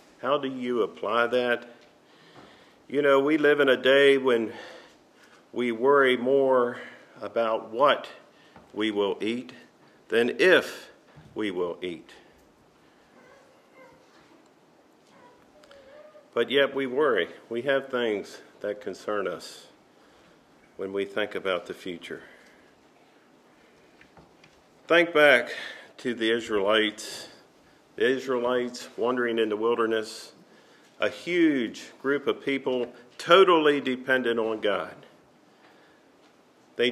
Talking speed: 100 wpm